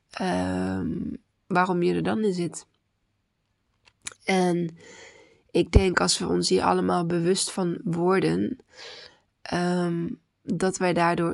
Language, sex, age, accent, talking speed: Dutch, female, 20-39, Dutch, 105 wpm